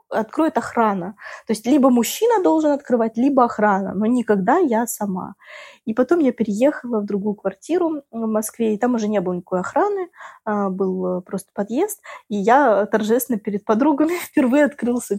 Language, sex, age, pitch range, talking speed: Russian, female, 20-39, 190-245 Hz, 160 wpm